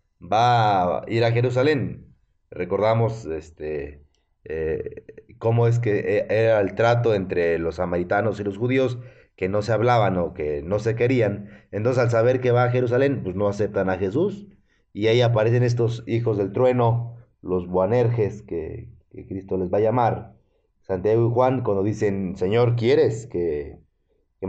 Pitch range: 100-120 Hz